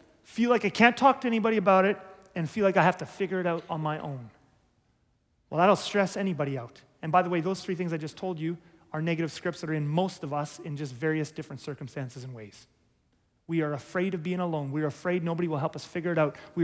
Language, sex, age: English, male, 30-49